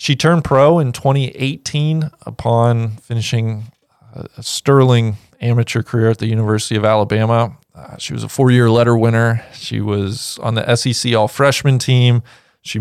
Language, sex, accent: English, male, American